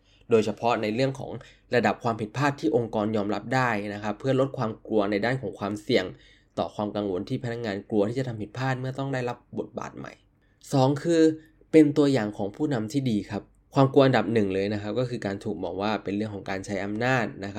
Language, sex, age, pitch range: Thai, male, 20-39, 105-135 Hz